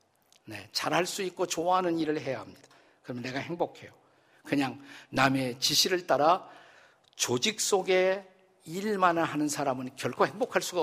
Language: Korean